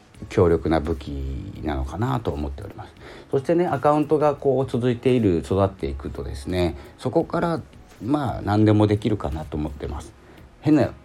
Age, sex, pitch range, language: 40-59, male, 75-115 Hz, Japanese